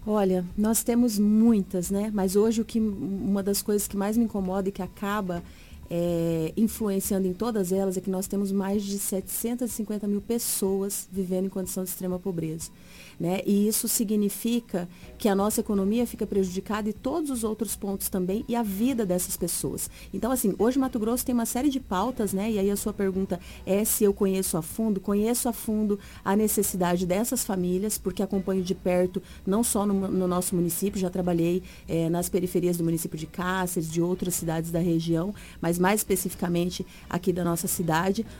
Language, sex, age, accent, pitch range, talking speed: Portuguese, female, 40-59, Brazilian, 185-220 Hz, 180 wpm